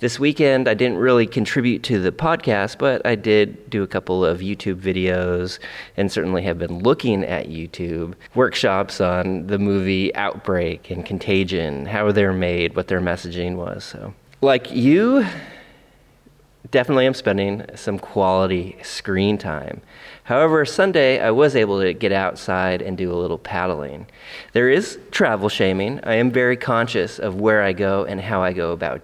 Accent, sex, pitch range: American, male, 90-110 Hz